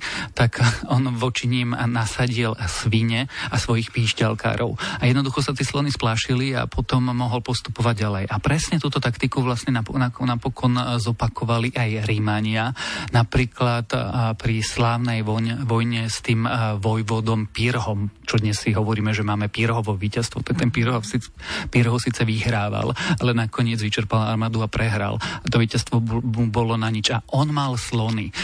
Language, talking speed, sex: Slovak, 140 wpm, male